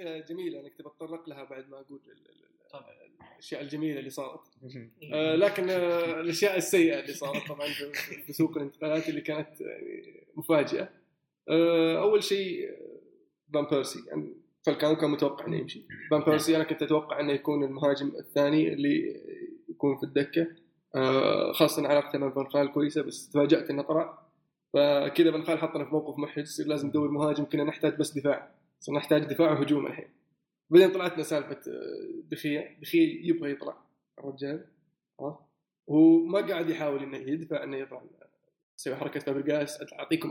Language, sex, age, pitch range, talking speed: Arabic, male, 20-39, 145-170 Hz, 145 wpm